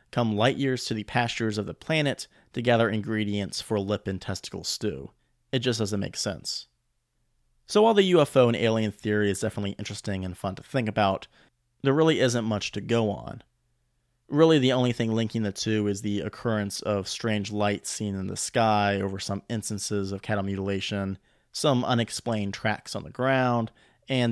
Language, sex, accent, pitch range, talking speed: English, male, American, 100-125 Hz, 185 wpm